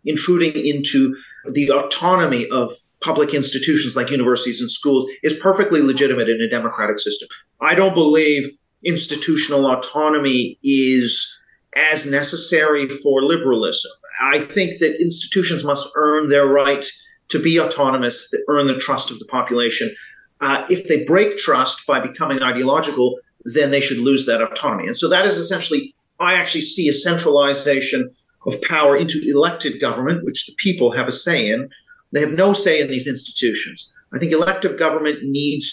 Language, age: English, 40-59